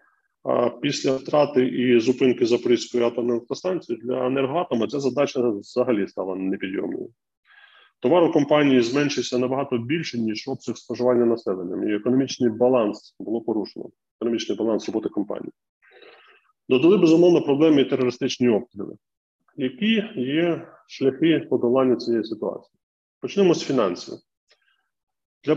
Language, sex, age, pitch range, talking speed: Ukrainian, male, 20-39, 120-145 Hz, 115 wpm